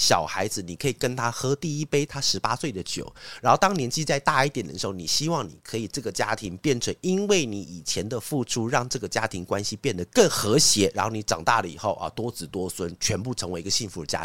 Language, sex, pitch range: Chinese, male, 105-160 Hz